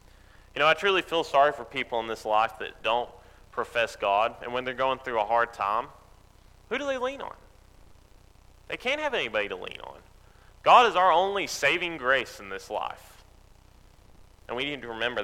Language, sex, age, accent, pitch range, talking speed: English, male, 30-49, American, 100-135 Hz, 195 wpm